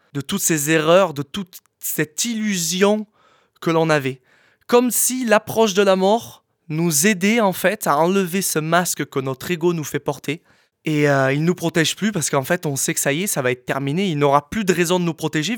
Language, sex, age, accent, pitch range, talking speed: French, male, 20-39, French, 135-185 Hz, 225 wpm